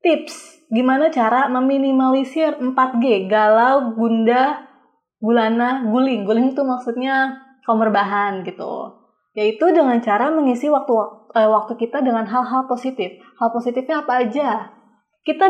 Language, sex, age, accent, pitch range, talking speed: Indonesian, female, 20-39, native, 220-270 Hz, 110 wpm